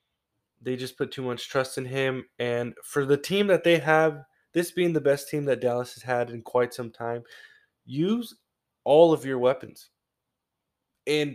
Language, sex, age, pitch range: English, male, 20-39, 125-145 Hz